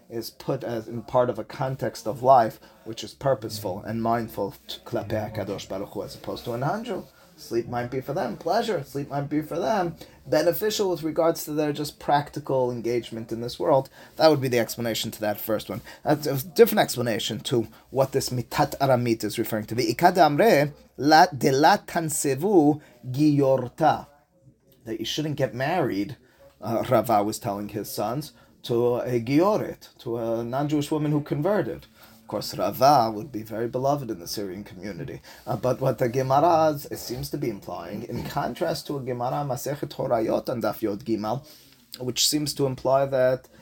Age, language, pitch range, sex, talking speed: 30-49, English, 115-145 Hz, male, 165 wpm